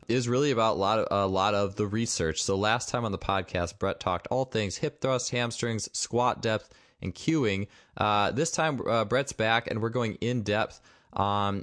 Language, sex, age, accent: English, male, 20-39, American